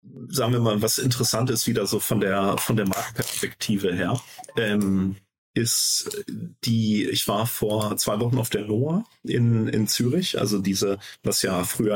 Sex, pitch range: male, 100-120 Hz